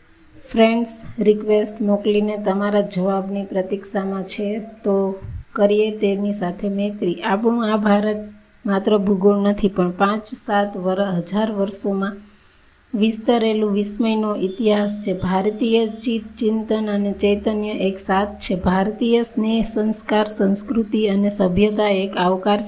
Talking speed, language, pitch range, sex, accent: 110 wpm, Gujarati, 200-220 Hz, female, native